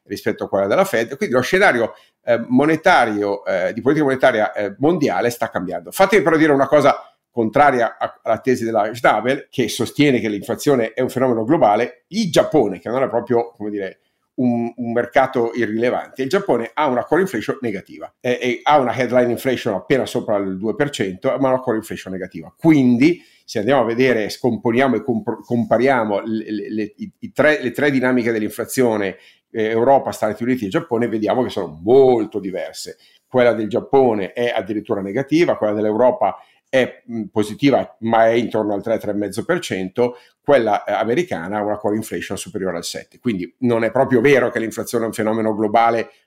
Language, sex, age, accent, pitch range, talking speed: Italian, male, 50-69, native, 110-135 Hz, 175 wpm